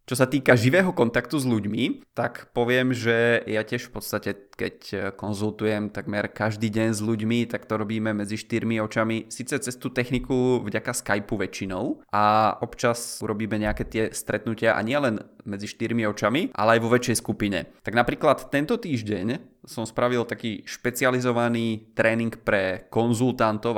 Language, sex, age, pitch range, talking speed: Czech, male, 20-39, 105-125 Hz, 155 wpm